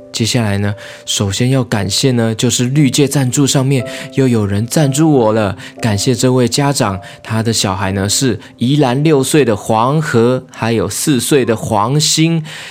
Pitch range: 110-140 Hz